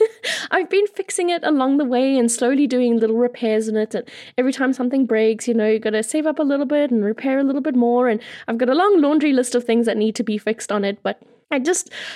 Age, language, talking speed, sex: 10-29, English, 265 wpm, female